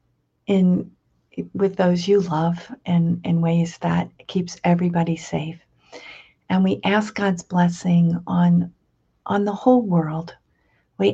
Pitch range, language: 165-180 Hz, English